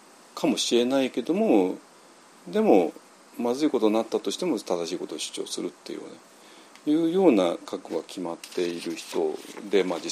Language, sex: Japanese, male